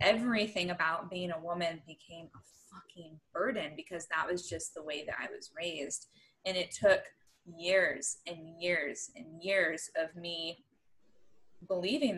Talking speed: 150 wpm